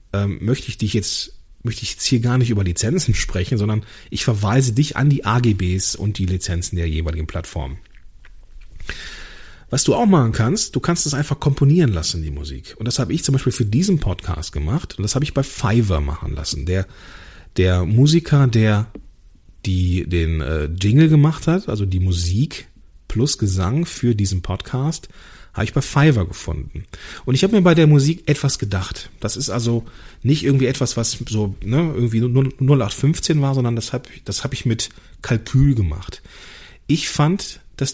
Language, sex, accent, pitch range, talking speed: German, male, German, 95-140 Hz, 180 wpm